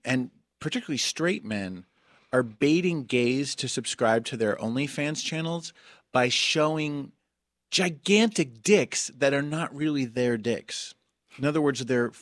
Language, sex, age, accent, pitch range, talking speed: English, male, 30-49, American, 115-145 Hz, 135 wpm